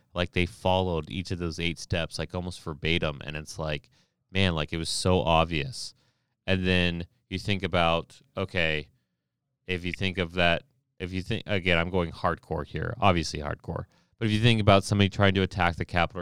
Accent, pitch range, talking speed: American, 85-100 Hz, 190 wpm